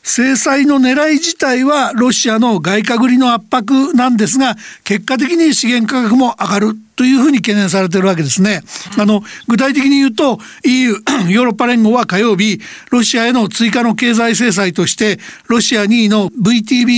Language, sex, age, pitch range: Japanese, male, 60-79, 205-245 Hz